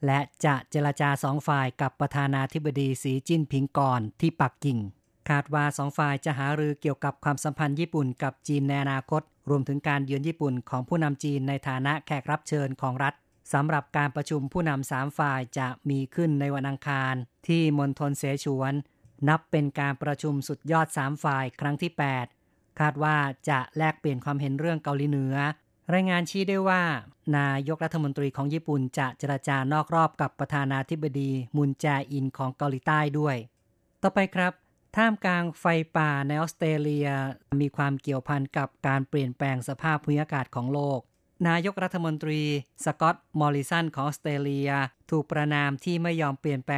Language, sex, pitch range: Thai, female, 135-155 Hz